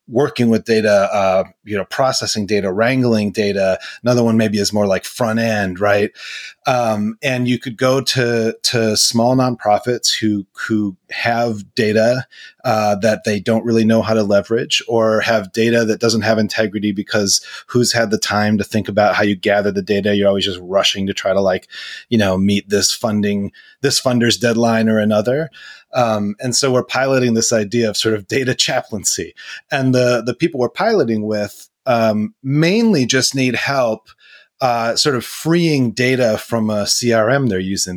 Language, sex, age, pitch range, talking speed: English, male, 30-49, 105-125 Hz, 180 wpm